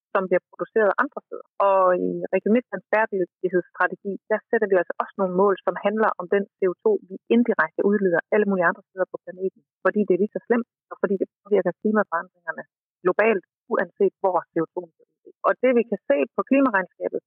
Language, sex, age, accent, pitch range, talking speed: Danish, female, 30-49, native, 180-220 Hz, 190 wpm